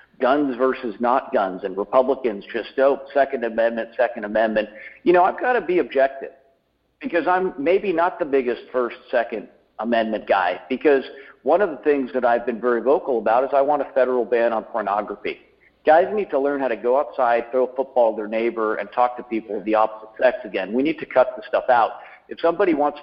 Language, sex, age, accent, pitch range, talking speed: English, male, 50-69, American, 115-140 Hz, 210 wpm